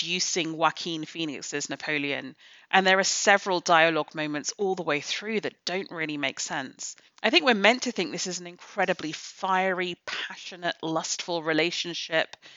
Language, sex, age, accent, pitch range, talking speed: English, female, 40-59, British, 155-190 Hz, 160 wpm